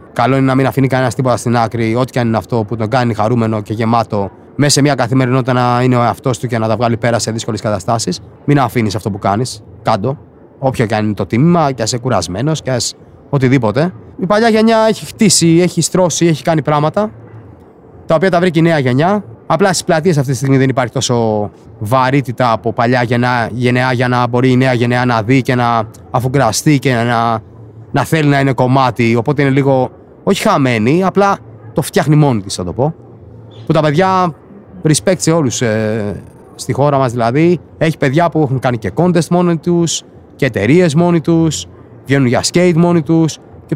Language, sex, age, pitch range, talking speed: Greek, male, 30-49, 115-165 Hz, 200 wpm